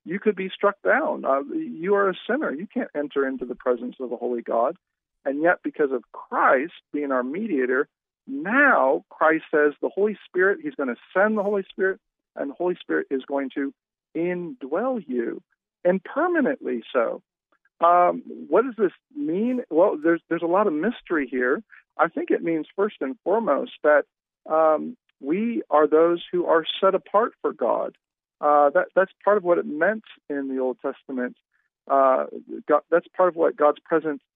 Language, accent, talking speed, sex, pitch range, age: English, American, 180 wpm, male, 145-200 Hz, 50-69